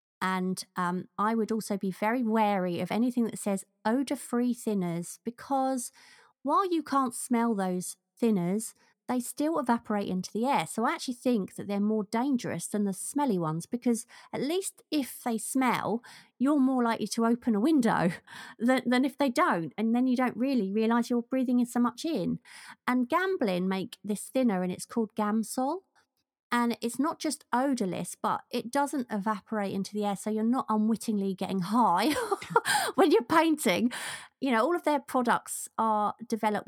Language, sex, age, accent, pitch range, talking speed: English, female, 30-49, British, 195-250 Hz, 175 wpm